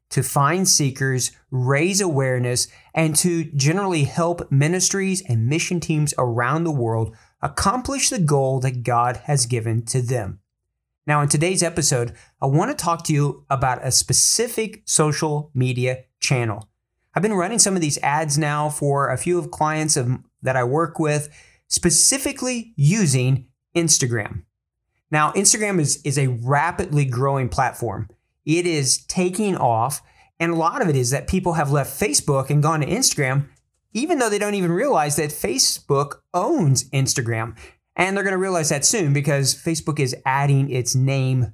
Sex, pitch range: male, 130-170 Hz